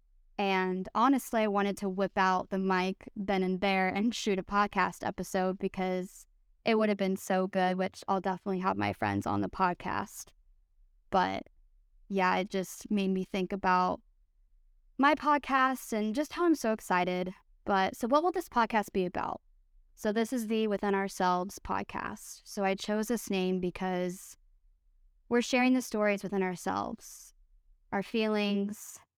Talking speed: 160 wpm